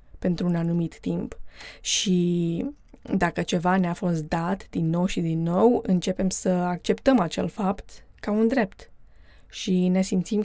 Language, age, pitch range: Romanian, 20-39, 175-210 Hz